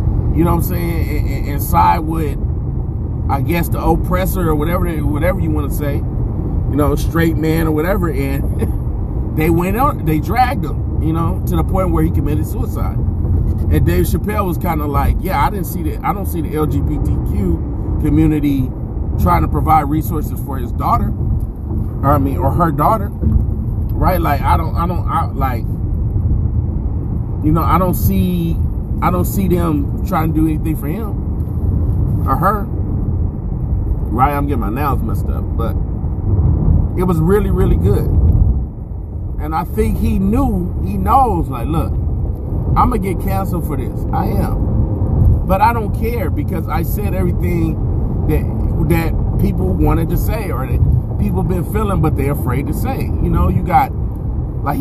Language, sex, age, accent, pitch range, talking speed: English, male, 30-49, American, 80-105 Hz, 175 wpm